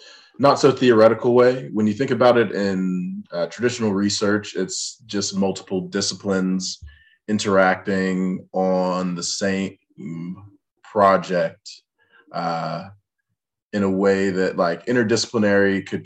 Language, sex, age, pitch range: English, male, 20-39, 90-105 Hz